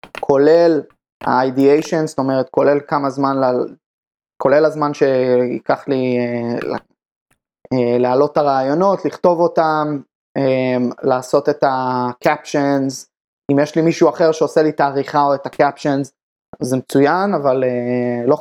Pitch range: 125-150 Hz